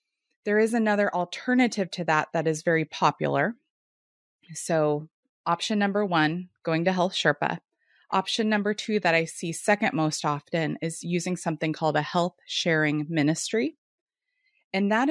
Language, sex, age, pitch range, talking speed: English, female, 20-39, 165-220 Hz, 145 wpm